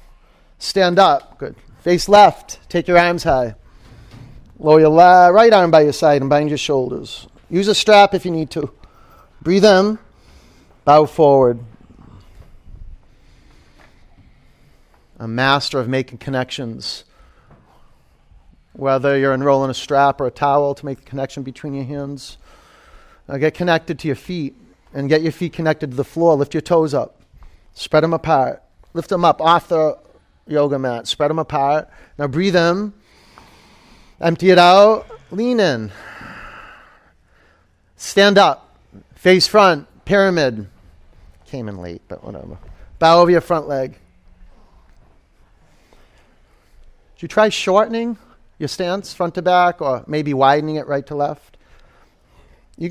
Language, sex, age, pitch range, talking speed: English, male, 40-59, 130-175 Hz, 140 wpm